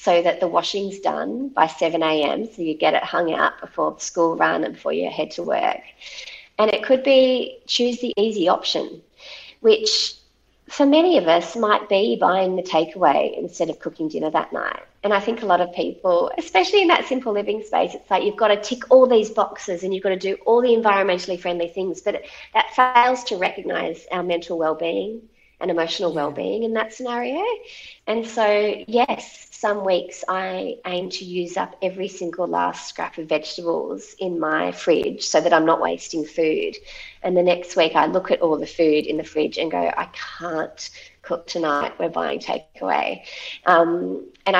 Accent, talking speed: Australian, 190 wpm